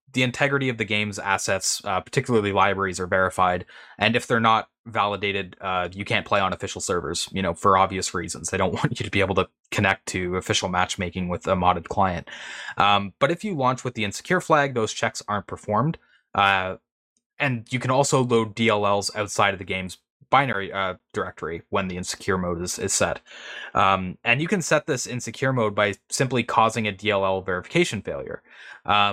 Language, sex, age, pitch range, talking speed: English, male, 20-39, 95-120 Hz, 190 wpm